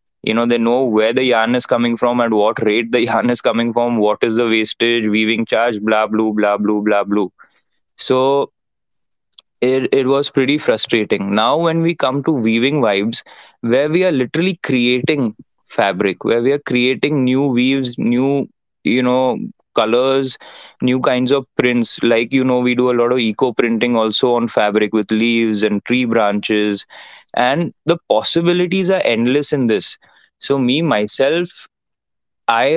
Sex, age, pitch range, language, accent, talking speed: male, 20-39, 110-130 Hz, Hindi, native, 170 wpm